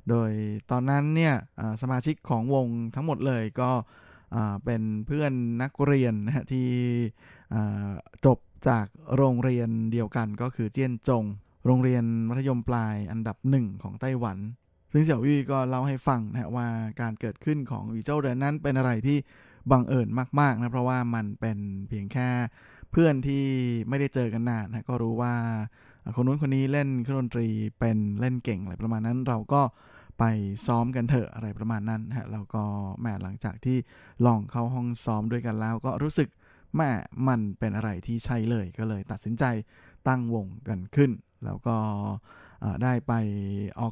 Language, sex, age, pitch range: Thai, male, 20-39, 110-130 Hz